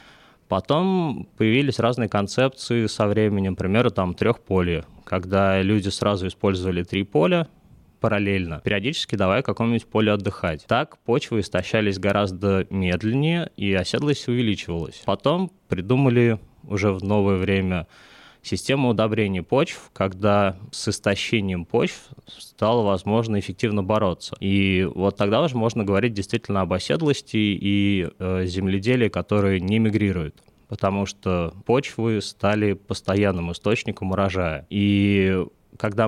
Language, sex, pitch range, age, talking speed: Russian, male, 95-110 Hz, 20-39, 120 wpm